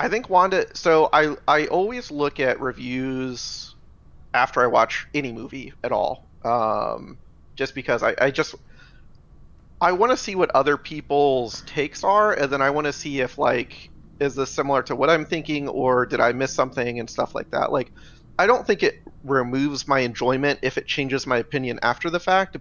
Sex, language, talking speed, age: male, English, 195 wpm, 30-49